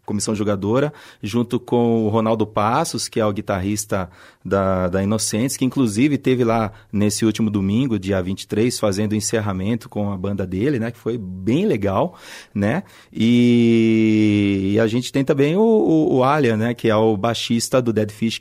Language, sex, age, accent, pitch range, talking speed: Portuguese, male, 30-49, Brazilian, 105-130 Hz, 175 wpm